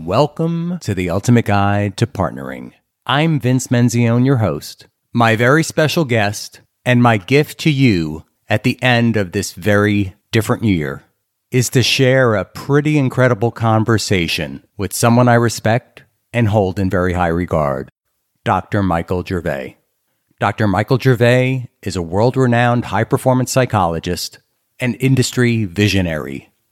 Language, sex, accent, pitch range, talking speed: English, male, American, 100-130 Hz, 135 wpm